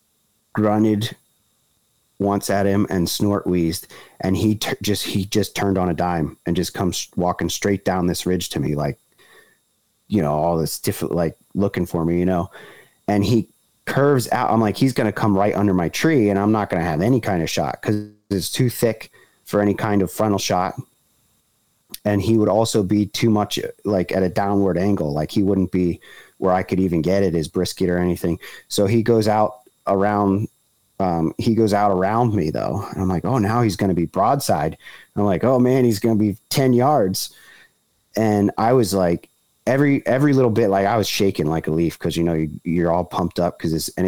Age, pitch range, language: 30-49, 90-105 Hz, English